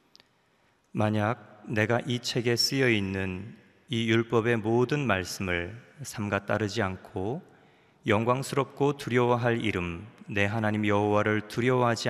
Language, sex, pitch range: Korean, male, 95-120 Hz